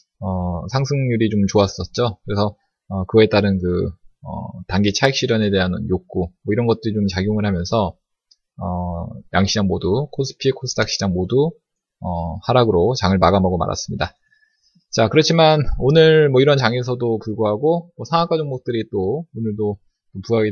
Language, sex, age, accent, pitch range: Korean, male, 20-39, native, 95-135 Hz